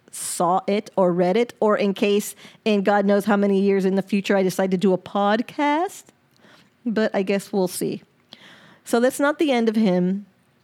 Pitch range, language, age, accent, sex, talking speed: 170-205 Hz, English, 30-49, American, female, 195 wpm